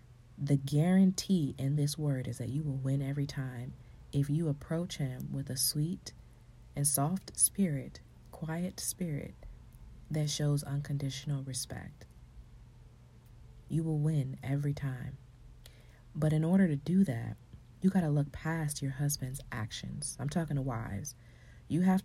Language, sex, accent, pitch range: English, female, American, 135-155 Hz